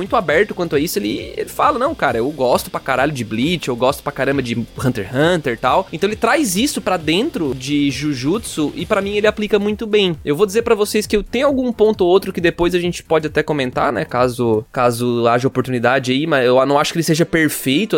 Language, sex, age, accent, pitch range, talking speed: Portuguese, male, 20-39, Brazilian, 130-185 Hz, 245 wpm